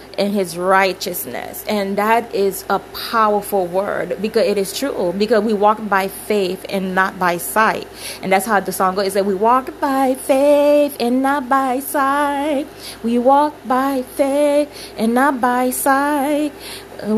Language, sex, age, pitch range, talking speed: English, female, 20-39, 210-265 Hz, 160 wpm